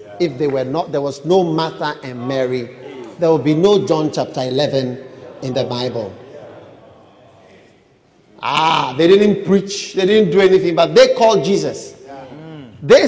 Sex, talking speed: male, 150 wpm